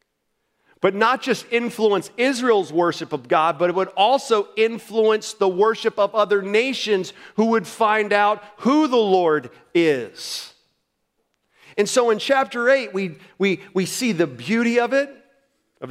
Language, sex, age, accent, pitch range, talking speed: English, male, 40-59, American, 135-210 Hz, 150 wpm